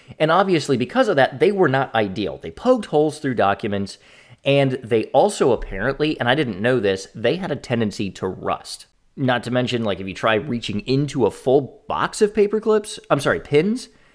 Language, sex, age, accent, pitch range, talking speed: English, male, 30-49, American, 110-150 Hz, 200 wpm